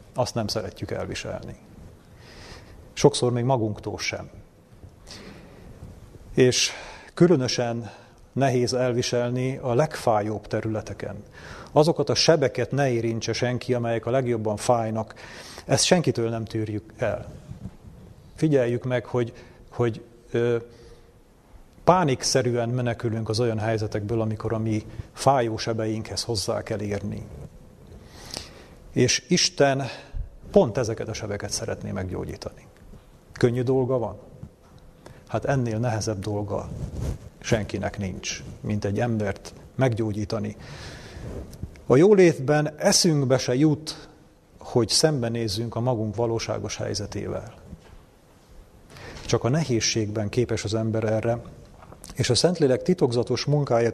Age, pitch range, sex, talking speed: 40-59, 110-125 Hz, male, 100 wpm